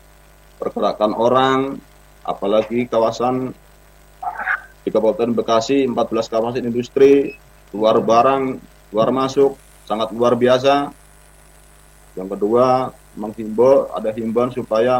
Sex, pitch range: male, 115-140 Hz